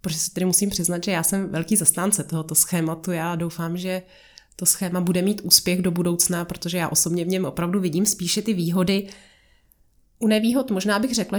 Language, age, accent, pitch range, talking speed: Czech, 30-49, native, 175-205 Hz, 190 wpm